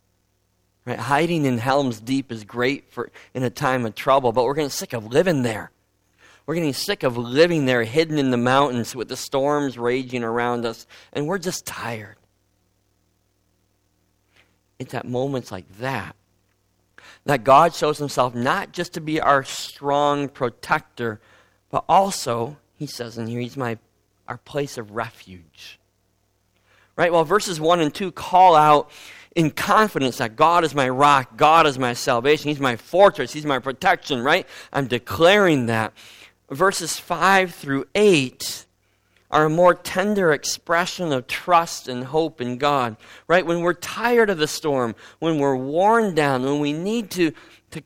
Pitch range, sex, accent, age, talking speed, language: 110-155 Hz, male, American, 40-59, 160 wpm, English